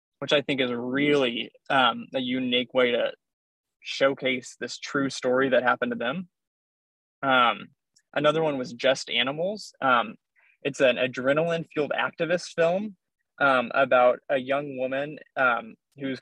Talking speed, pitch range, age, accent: 135 wpm, 130-160 Hz, 20-39, American